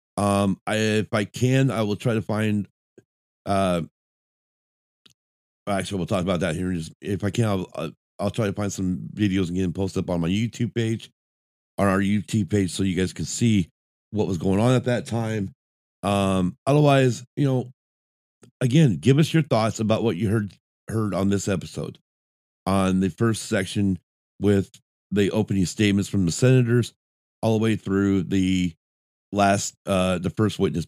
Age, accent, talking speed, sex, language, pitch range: 30-49, American, 175 wpm, male, English, 85-110 Hz